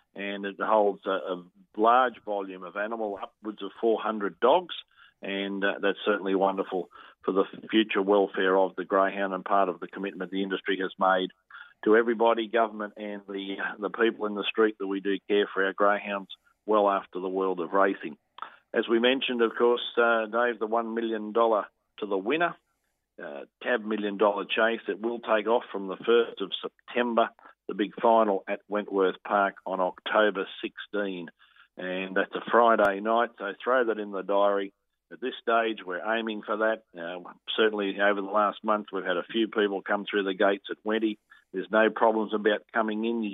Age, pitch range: 50-69, 95-110 Hz